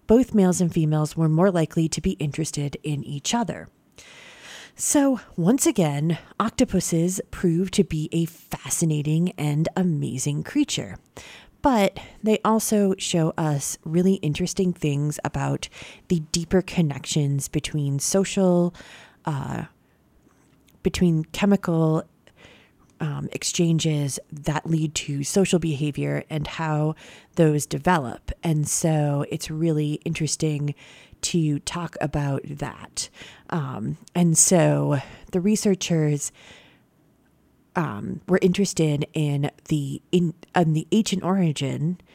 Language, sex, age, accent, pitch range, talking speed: English, female, 30-49, American, 150-185 Hz, 110 wpm